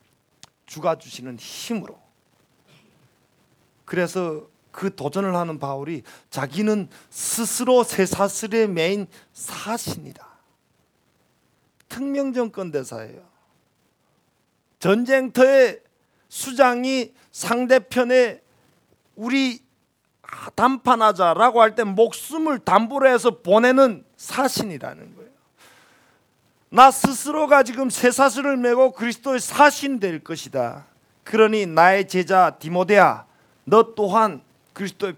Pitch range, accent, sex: 180-260 Hz, native, male